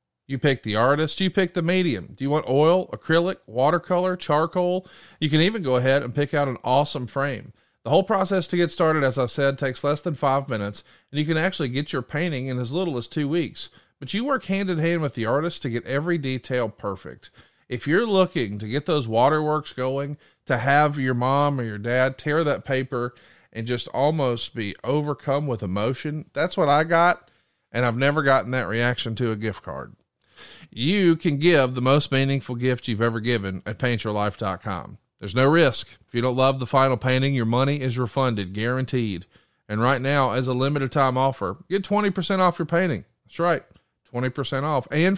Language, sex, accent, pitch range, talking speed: English, male, American, 125-170 Hz, 200 wpm